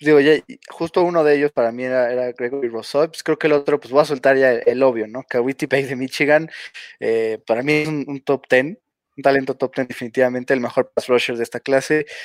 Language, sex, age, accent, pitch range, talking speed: Spanish, male, 20-39, Mexican, 120-150 Hz, 240 wpm